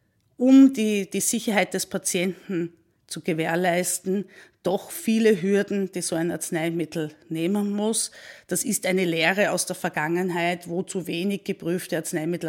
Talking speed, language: 140 wpm, German